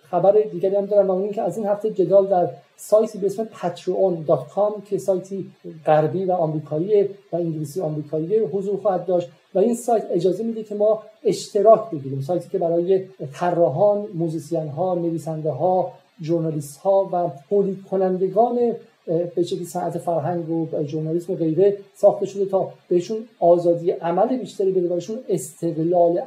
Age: 50-69